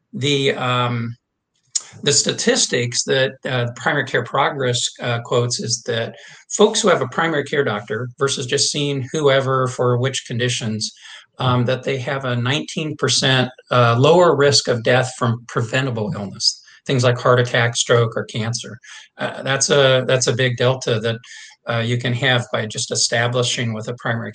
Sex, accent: male, American